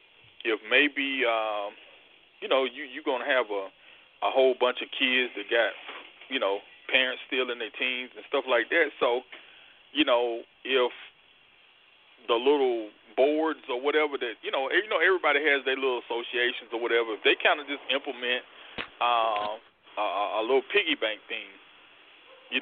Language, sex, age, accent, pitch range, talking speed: English, male, 20-39, American, 125-205 Hz, 165 wpm